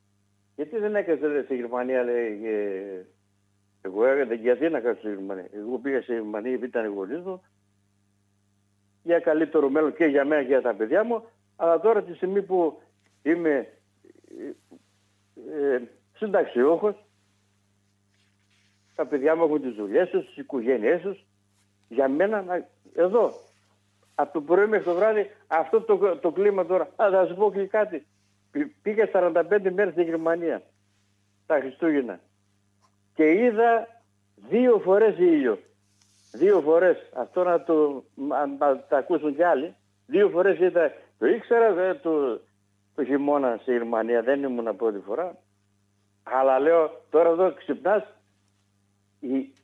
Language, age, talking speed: Greek, 60-79, 135 wpm